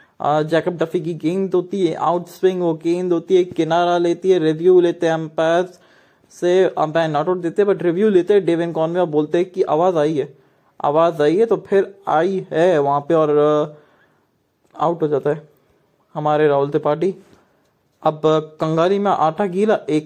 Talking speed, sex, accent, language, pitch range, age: 160 wpm, male, Indian, English, 155-200 Hz, 20-39